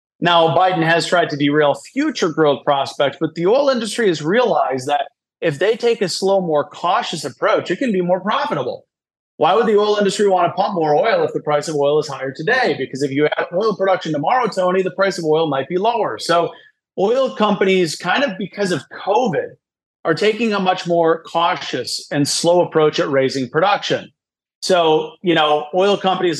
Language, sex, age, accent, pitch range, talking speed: English, male, 30-49, American, 155-200 Hz, 200 wpm